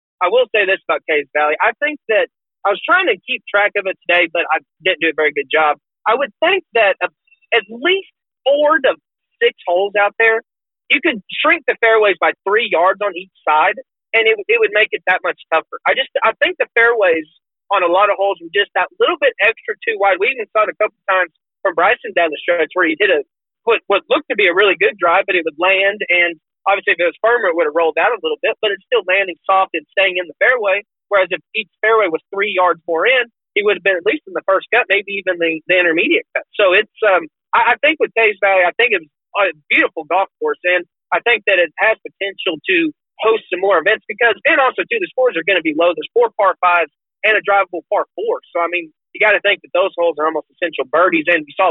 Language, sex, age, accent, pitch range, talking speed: English, male, 30-49, American, 175-270 Hz, 260 wpm